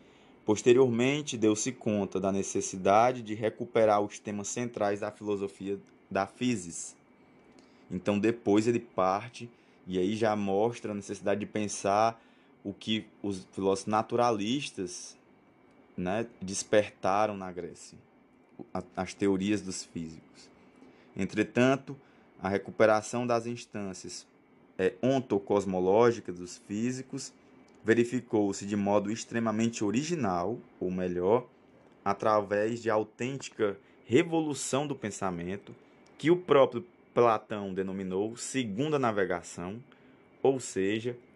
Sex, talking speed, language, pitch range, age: male, 100 wpm, Portuguese, 100-120 Hz, 20-39